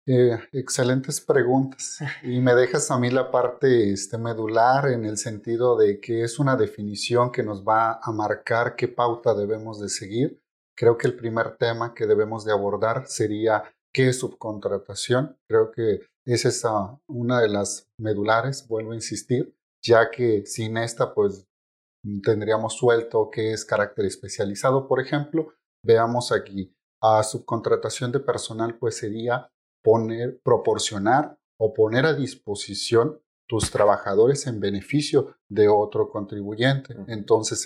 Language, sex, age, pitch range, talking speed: Spanish, male, 30-49, 105-125 Hz, 145 wpm